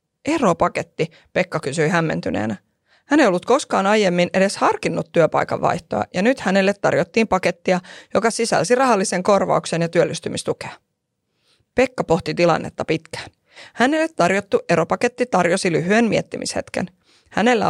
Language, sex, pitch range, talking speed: Finnish, female, 175-245 Hz, 120 wpm